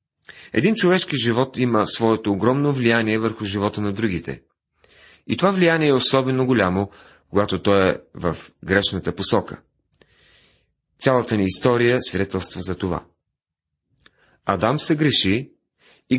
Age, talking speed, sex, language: 30-49, 120 wpm, male, Bulgarian